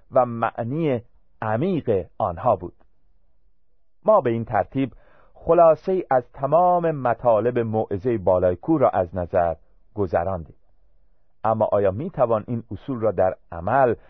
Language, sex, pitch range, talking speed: Persian, male, 100-155 Hz, 125 wpm